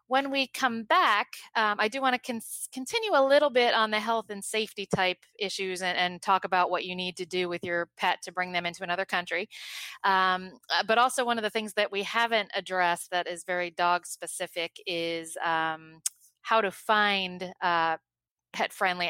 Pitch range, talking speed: 180-235 Hz, 195 wpm